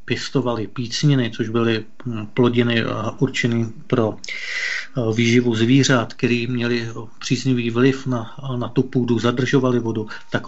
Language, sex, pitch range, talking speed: Czech, male, 115-130 Hz, 110 wpm